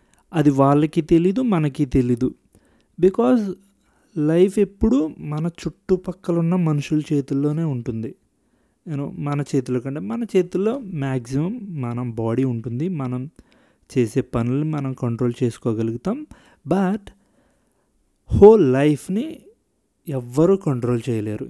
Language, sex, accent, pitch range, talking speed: Telugu, male, native, 130-185 Hz, 100 wpm